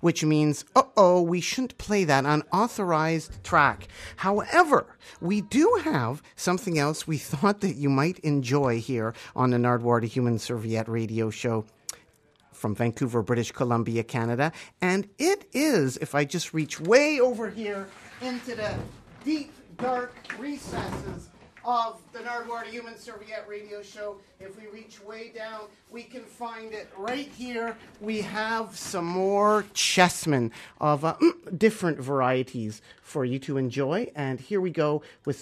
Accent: American